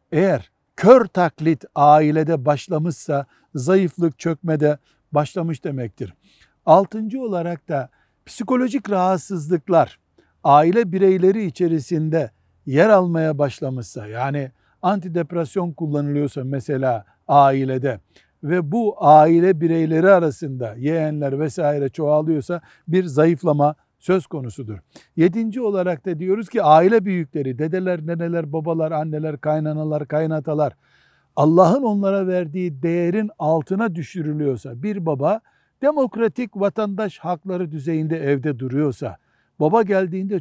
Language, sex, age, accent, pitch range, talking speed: Turkish, male, 60-79, native, 140-180 Hz, 100 wpm